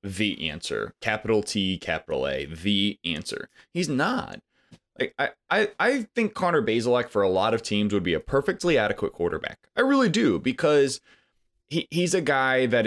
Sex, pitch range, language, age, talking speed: male, 100-140 Hz, English, 20-39, 170 wpm